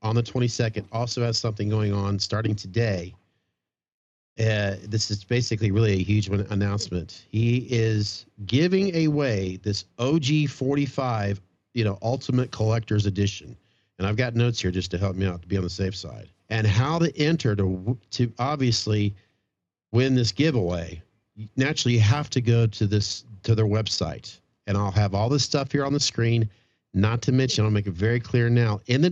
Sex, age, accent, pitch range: male, 40-59, American, 100-125 Hz